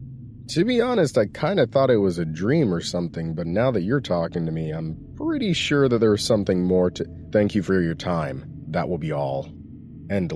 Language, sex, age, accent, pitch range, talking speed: English, male, 30-49, American, 85-130 Hz, 220 wpm